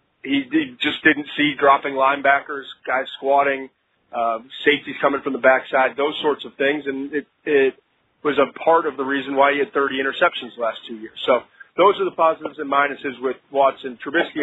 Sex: male